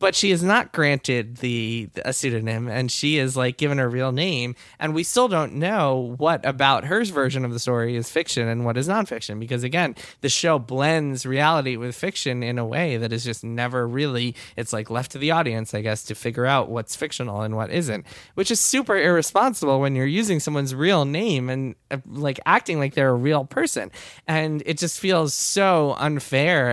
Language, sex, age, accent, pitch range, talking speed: English, male, 20-39, American, 120-155 Hz, 205 wpm